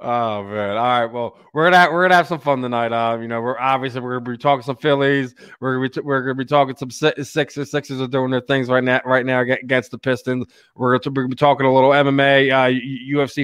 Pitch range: 125-145 Hz